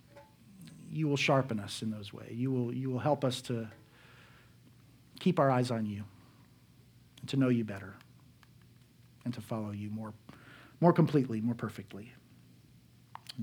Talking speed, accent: 150 wpm, American